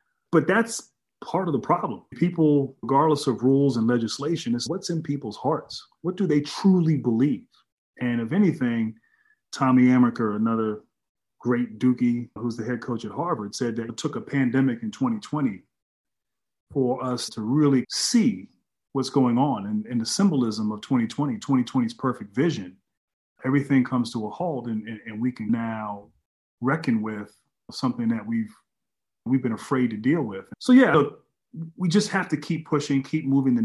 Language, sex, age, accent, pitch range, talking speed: English, male, 30-49, American, 115-150 Hz, 170 wpm